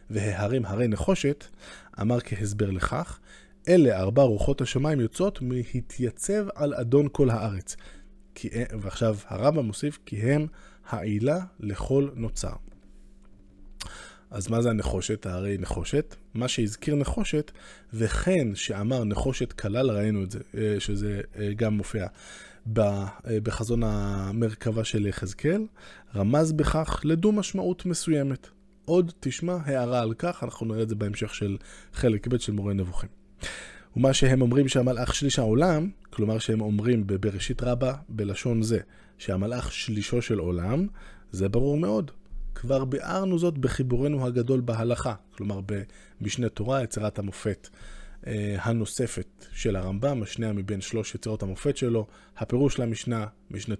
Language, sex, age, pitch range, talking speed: Hebrew, male, 20-39, 105-135 Hz, 125 wpm